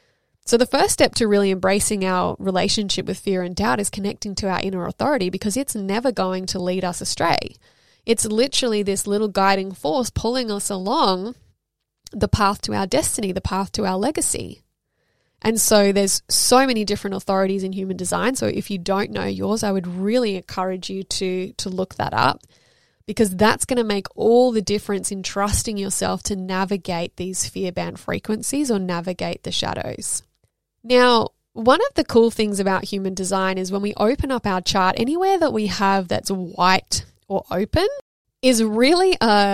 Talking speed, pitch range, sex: 180 wpm, 190-225 Hz, female